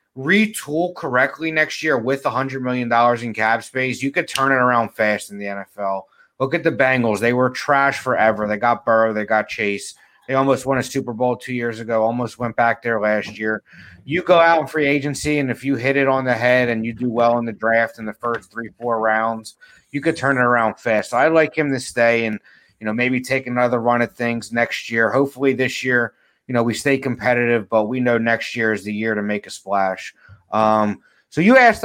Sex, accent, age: male, American, 30-49